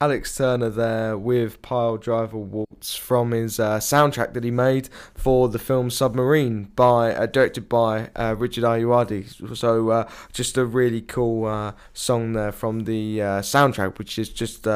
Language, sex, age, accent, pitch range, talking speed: English, male, 10-29, British, 105-120 Hz, 165 wpm